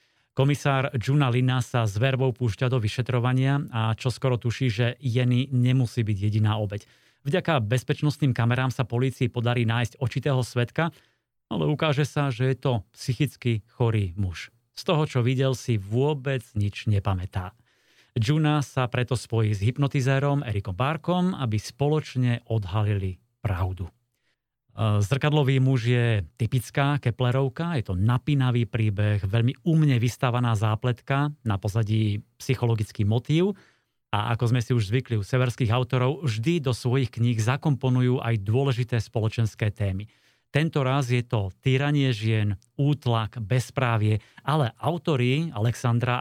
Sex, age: male, 30-49